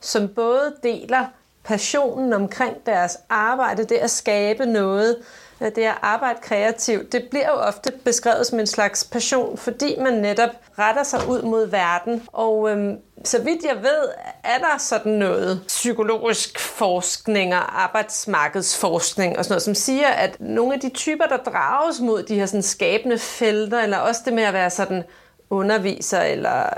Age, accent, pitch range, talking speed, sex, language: 30-49, native, 210-260 Hz, 170 wpm, female, Danish